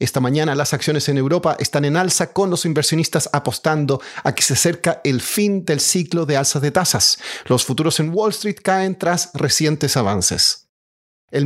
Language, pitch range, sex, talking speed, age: Spanish, 135-175 Hz, male, 185 wpm, 40-59